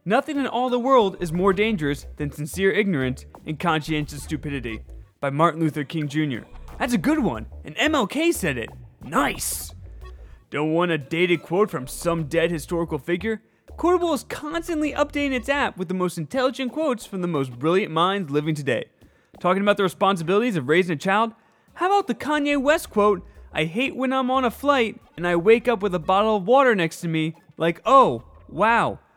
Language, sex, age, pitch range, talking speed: English, male, 20-39, 160-255 Hz, 190 wpm